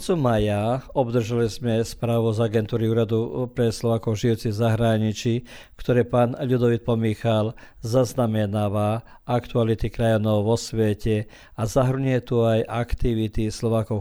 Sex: male